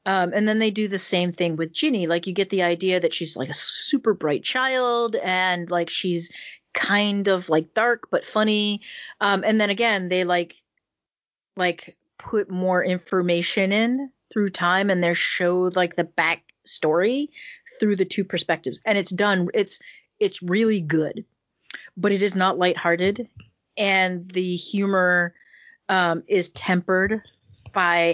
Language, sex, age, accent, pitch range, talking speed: English, female, 30-49, American, 175-205 Hz, 160 wpm